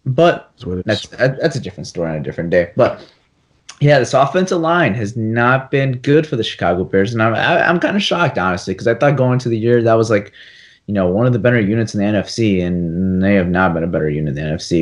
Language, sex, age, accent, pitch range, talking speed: English, male, 30-49, American, 100-135 Hz, 245 wpm